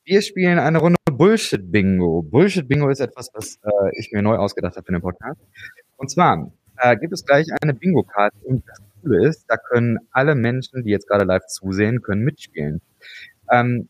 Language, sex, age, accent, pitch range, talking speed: German, male, 30-49, German, 110-155 Hz, 180 wpm